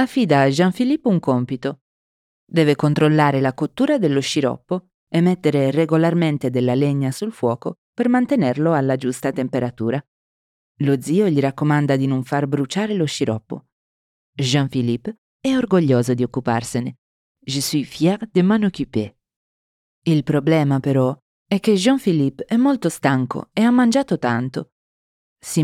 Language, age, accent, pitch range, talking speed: Italian, 30-49, native, 130-180 Hz, 135 wpm